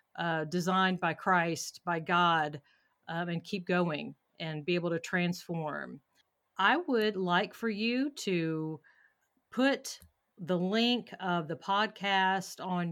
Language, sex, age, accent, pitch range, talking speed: English, female, 40-59, American, 175-220 Hz, 130 wpm